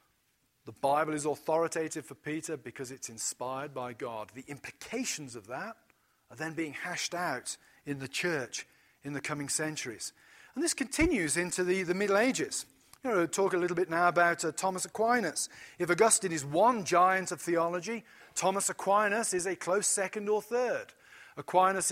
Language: English